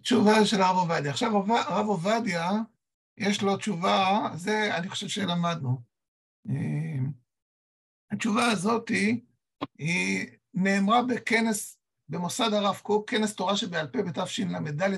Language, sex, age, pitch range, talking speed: Hebrew, male, 60-79, 175-220 Hz, 110 wpm